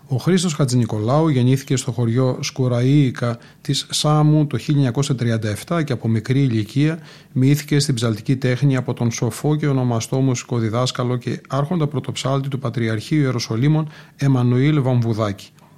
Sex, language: male, Greek